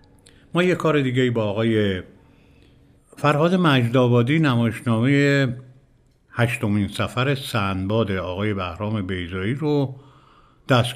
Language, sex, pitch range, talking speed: Persian, male, 105-135 Hz, 105 wpm